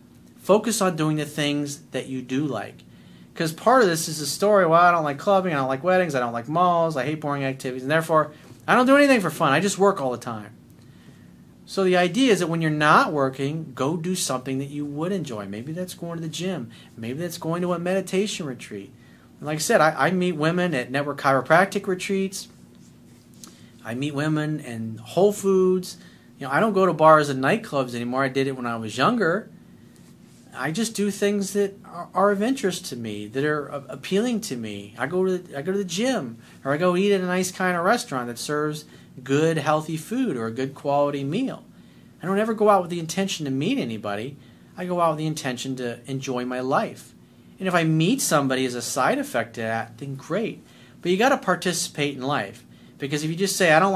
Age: 30-49